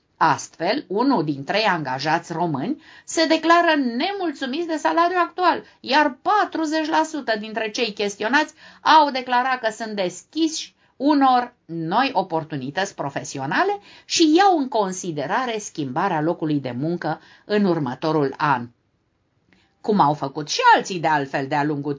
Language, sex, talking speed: Romanian, female, 125 wpm